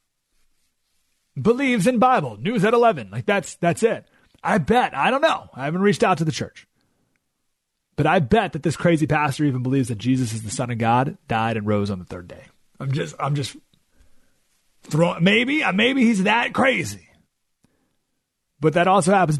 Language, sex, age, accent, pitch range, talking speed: English, male, 30-49, American, 135-225 Hz, 185 wpm